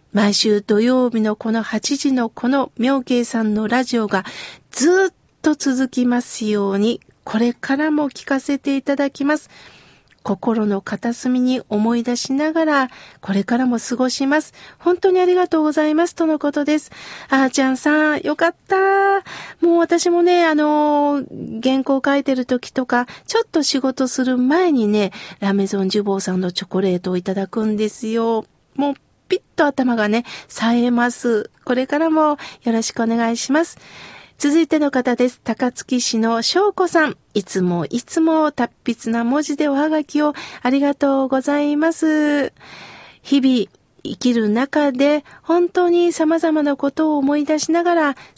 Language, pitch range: Japanese, 235-310 Hz